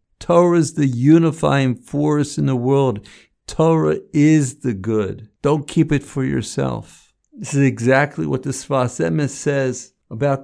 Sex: male